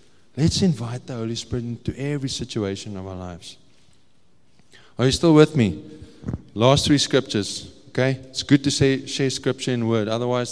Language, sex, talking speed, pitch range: English, male, 160 wpm, 115-150 Hz